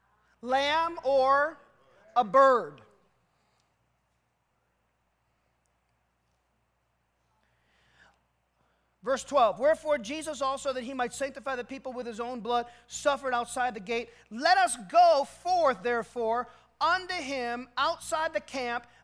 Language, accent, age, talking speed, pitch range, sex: English, American, 40-59, 105 wpm, 245-330 Hz, male